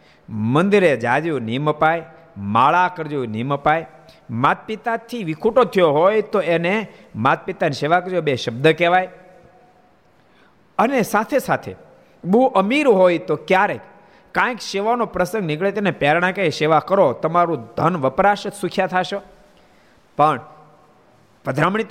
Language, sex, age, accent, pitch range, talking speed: Gujarati, male, 50-69, native, 140-210 Hz, 35 wpm